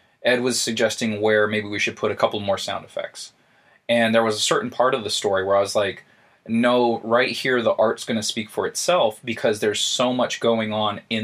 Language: English